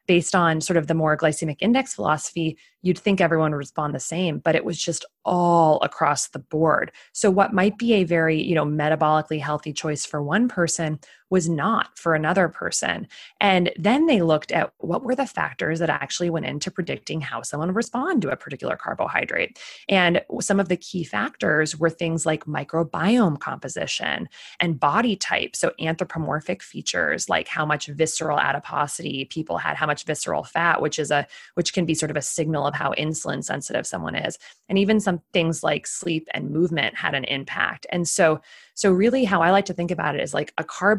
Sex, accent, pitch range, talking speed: female, American, 150-180 Hz, 200 wpm